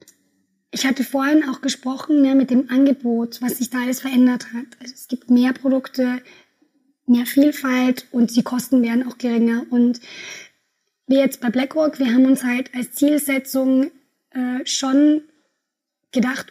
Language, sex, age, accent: German, female, 20-39, German